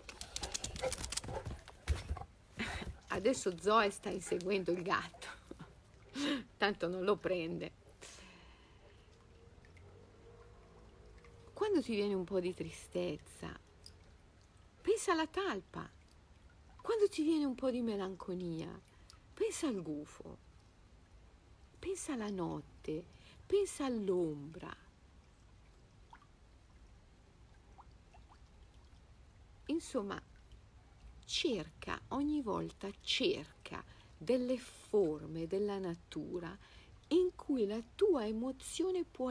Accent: native